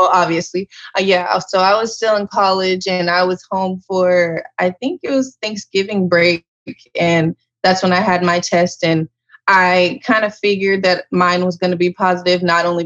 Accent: American